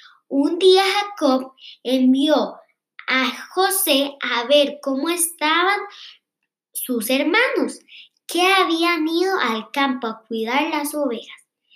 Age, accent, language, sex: 10-29, Mexican, Spanish, male